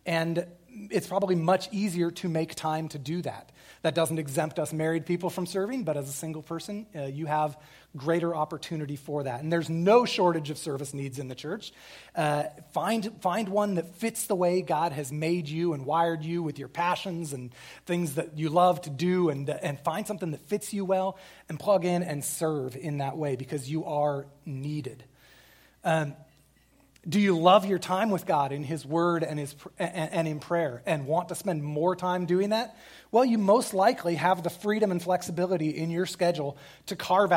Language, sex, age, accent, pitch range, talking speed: English, male, 30-49, American, 150-185 Hz, 200 wpm